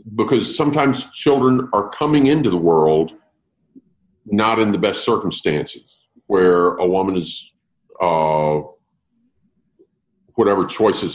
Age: 50-69